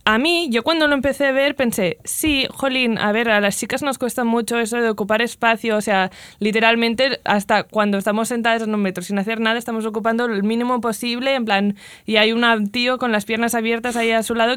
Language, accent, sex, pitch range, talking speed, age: Spanish, Spanish, female, 210-255 Hz, 225 wpm, 20-39